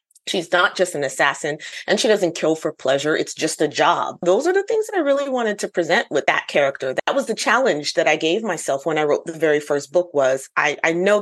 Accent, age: American, 30-49